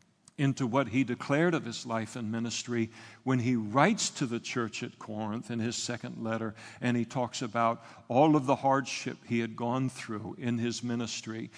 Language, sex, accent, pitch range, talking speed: English, male, American, 120-140 Hz, 185 wpm